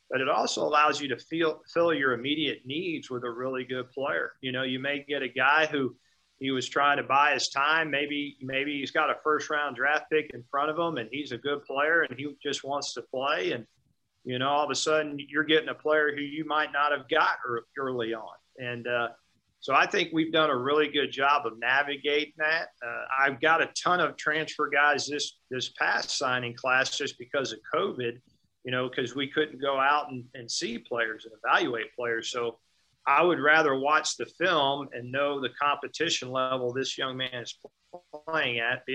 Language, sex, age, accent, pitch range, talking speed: English, male, 40-59, American, 130-150 Hz, 210 wpm